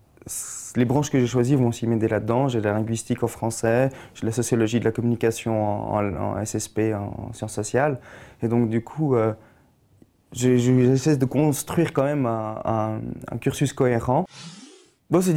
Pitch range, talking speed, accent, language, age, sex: 115-140 Hz, 180 wpm, French, French, 20-39, male